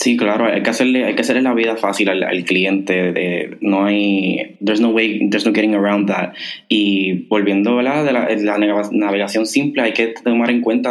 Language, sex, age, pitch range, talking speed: Spanish, male, 20-39, 100-110 Hz, 225 wpm